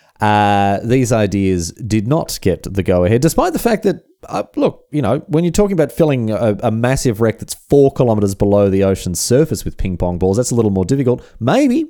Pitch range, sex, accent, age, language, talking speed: 90-135 Hz, male, Australian, 30-49, English, 215 wpm